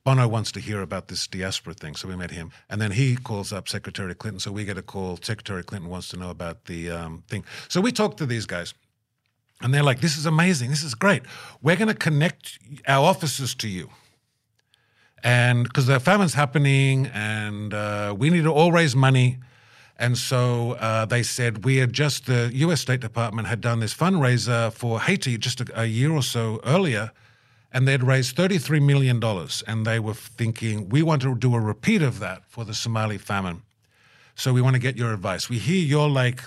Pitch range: 110-135 Hz